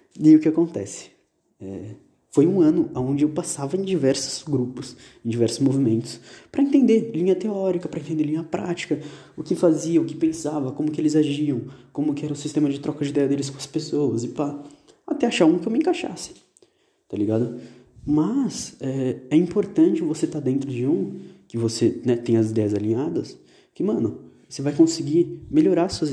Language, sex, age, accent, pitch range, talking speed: Portuguese, male, 20-39, Brazilian, 135-175 Hz, 190 wpm